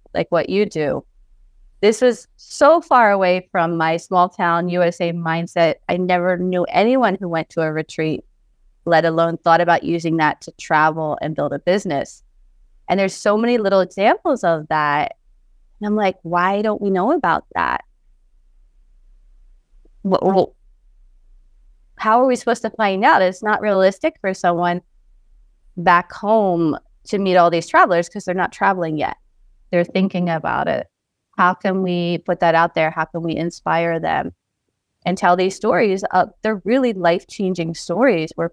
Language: English